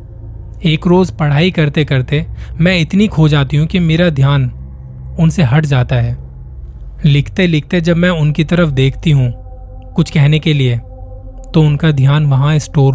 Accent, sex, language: native, male, Hindi